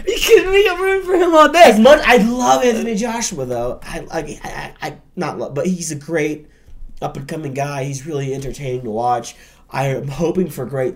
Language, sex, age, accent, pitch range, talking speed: English, male, 20-39, American, 100-130 Hz, 190 wpm